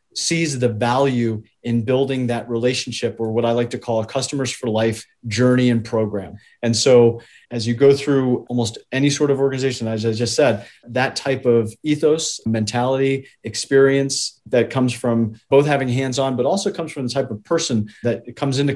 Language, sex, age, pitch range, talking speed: English, male, 30-49, 115-135 Hz, 190 wpm